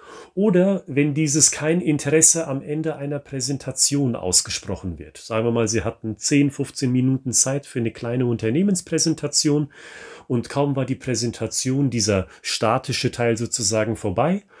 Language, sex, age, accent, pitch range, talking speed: German, male, 40-59, German, 110-145 Hz, 140 wpm